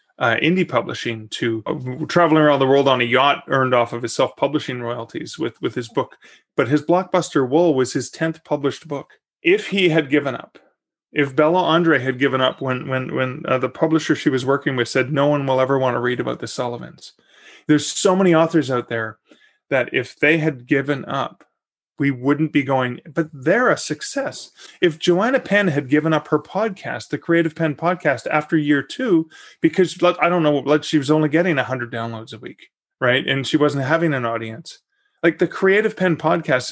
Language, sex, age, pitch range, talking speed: English, male, 30-49, 130-170 Hz, 200 wpm